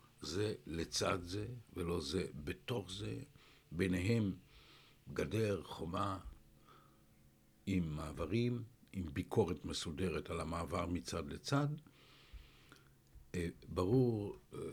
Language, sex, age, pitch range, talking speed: Hebrew, male, 60-79, 90-125 Hz, 80 wpm